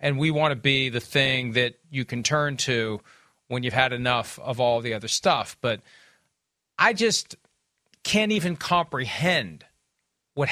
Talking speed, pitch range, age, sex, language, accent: 160 wpm, 130-170 Hz, 40-59, male, English, American